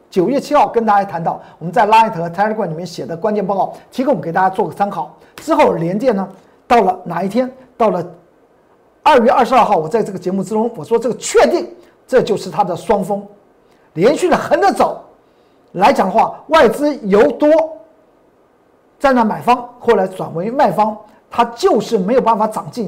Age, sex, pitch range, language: 50-69, male, 185-255 Hz, Chinese